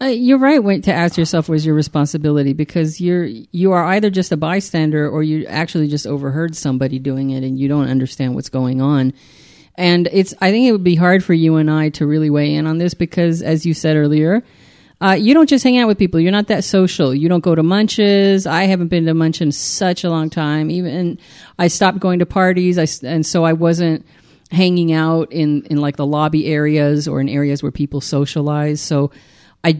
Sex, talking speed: female, 220 wpm